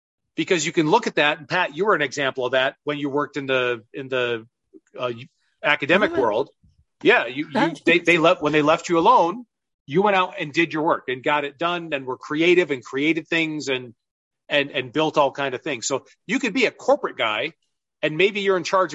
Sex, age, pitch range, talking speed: male, 40-59, 135-170 Hz, 230 wpm